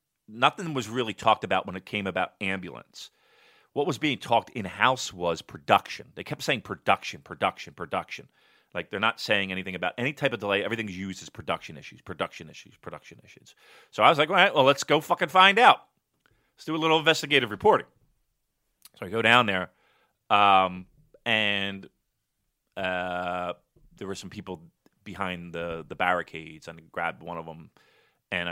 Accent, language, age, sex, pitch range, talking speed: American, English, 30-49, male, 90-125 Hz, 175 wpm